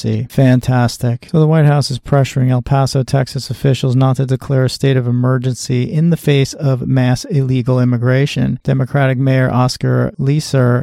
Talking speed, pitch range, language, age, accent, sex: 160 wpm, 125-135 Hz, English, 40-59, American, male